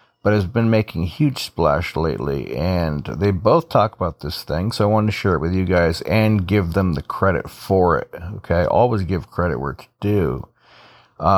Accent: American